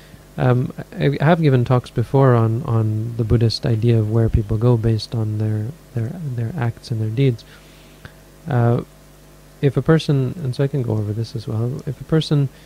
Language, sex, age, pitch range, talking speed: English, male, 30-49, 115-135 Hz, 190 wpm